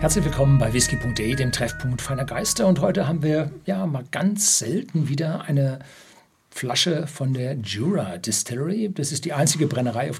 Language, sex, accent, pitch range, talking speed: German, male, German, 120-155 Hz, 170 wpm